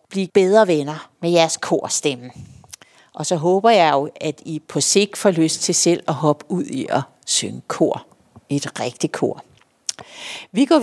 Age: 60-79